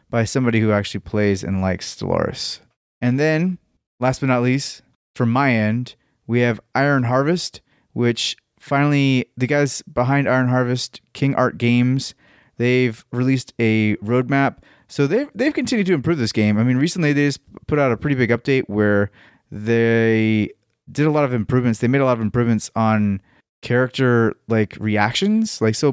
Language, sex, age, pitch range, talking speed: English, male, 30-49, 110-135 Hz, 170 wpm